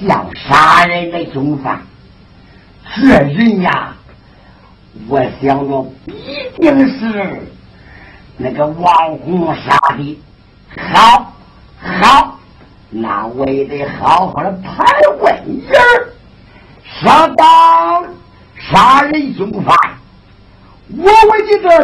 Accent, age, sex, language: American, 60-79, male, Chinese